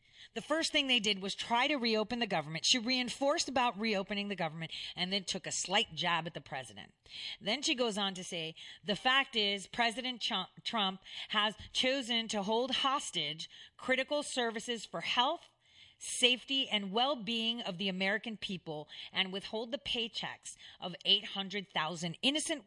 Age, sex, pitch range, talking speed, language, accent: 30-49, female, 155-220 Hz, 160 wpm, English, American